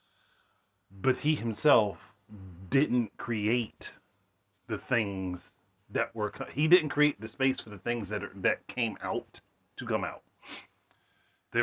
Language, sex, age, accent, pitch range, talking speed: English, male, 30-49, American, 100-125 Hz, 130 wpm